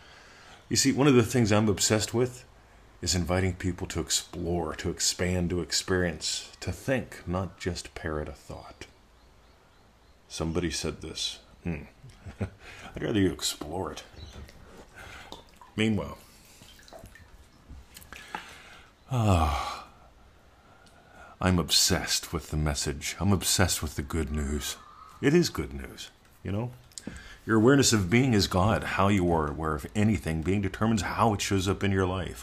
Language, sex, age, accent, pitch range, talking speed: English, male, 50-69, American, 80-105 Hz, 135 wpm